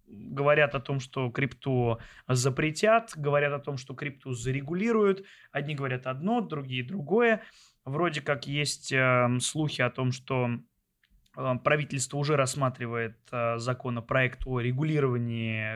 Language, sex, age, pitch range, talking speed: Russian, male, 20-39, 125-150 Hz, 125 wpm